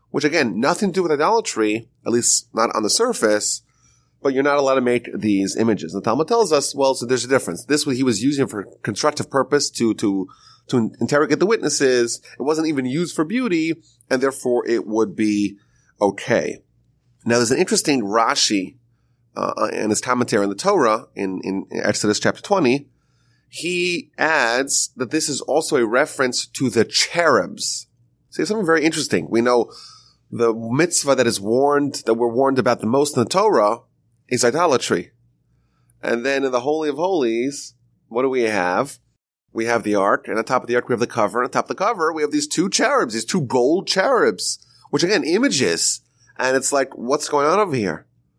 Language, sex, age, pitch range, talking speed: English, male, 30-49, 115-140 Hz, 195 wpm